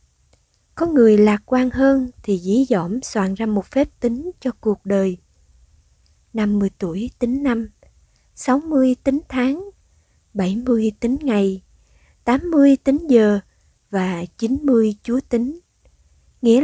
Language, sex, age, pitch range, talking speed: Vietnamese, female, 20-39, 200-255 Hz, 125 wpm